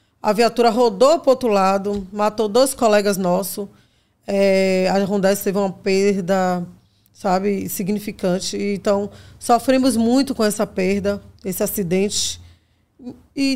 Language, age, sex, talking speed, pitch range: Portuguese, 20-39, female, 120 wpm, 195-235 Hz